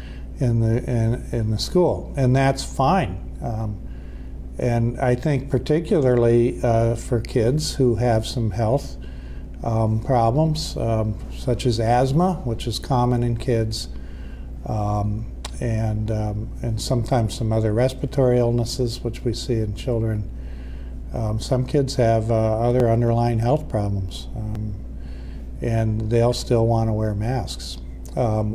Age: 50-69